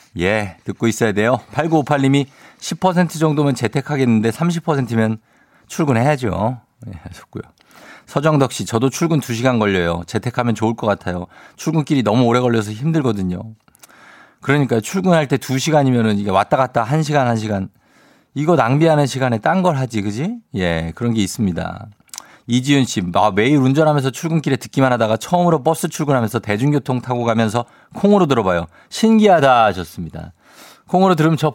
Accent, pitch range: native, 105-155 Hz